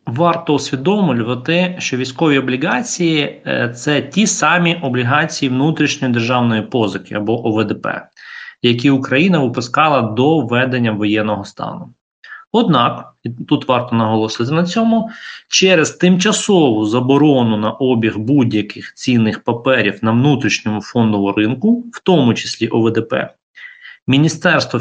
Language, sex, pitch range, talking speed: Ukrainian, male, 120-165 Hz, 110 wpm